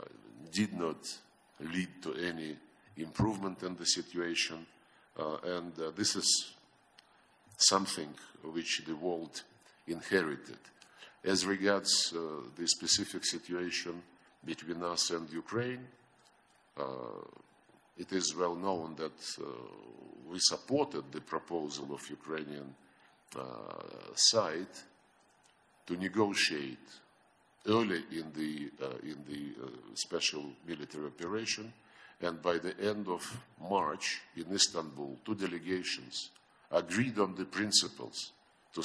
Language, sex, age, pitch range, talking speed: English, male, 50-69, 80-95 Hz, 110 wpm